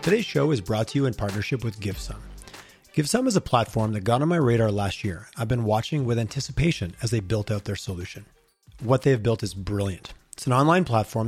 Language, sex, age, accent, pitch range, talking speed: English, male, 30-49, American, 105-135 Hz, 225 wpm